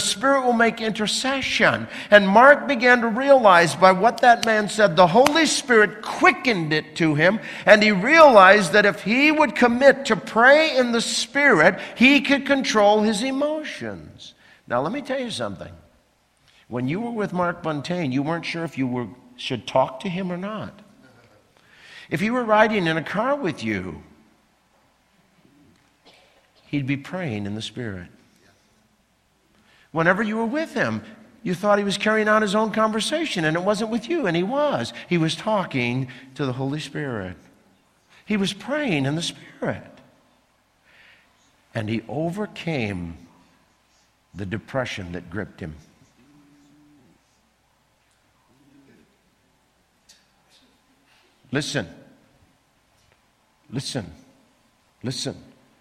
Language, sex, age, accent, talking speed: English, male, 60-79, American, 135 wpm